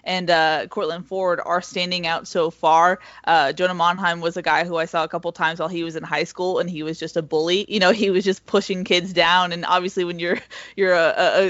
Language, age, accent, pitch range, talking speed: English, 20-39, American, 165-195 Hz, 245 wpm